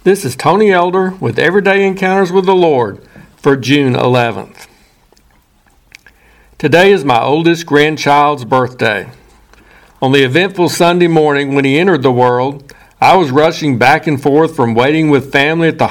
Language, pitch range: English, 135-170 Hz